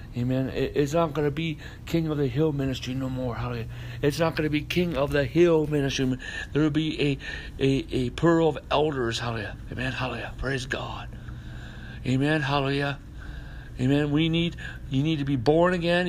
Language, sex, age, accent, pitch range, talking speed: English, male, 60-79, American, 115-145 Hz, 175 wpm